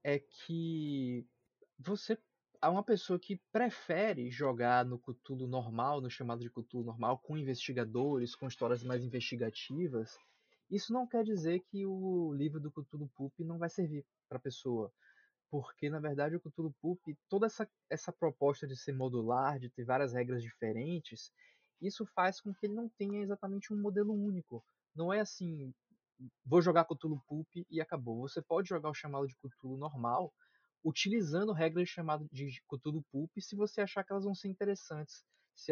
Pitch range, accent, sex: 130-180 Hz, Brazilian, male